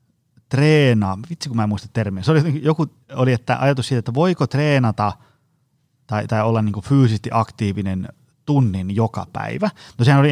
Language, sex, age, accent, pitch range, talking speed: Finnish, male, 30-49, native, 105-135 Hz, 165 wpm